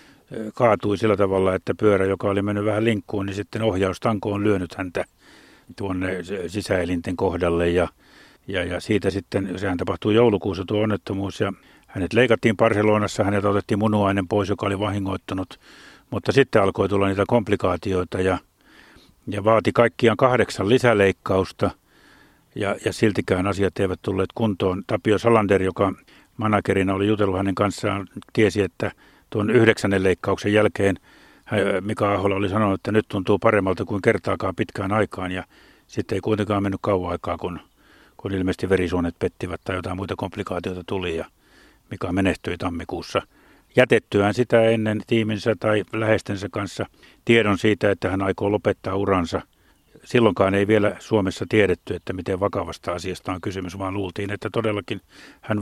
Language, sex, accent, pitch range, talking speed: Finnish, male, native, 95-110 Hz, 145 wpm